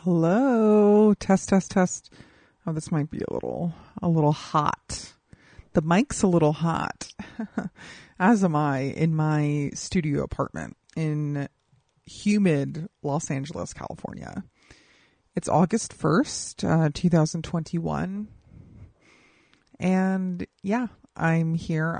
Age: 30-49